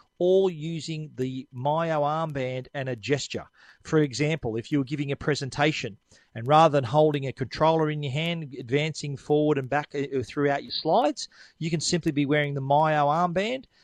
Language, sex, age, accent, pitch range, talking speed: English, male, 40-59, Australian, 135-155 Hz, 175 wpm